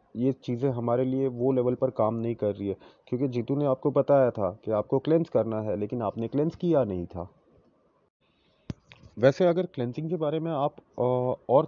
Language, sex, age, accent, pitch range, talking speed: Hindi, male, 30-49, native, 120-150 Hz, 190 wpm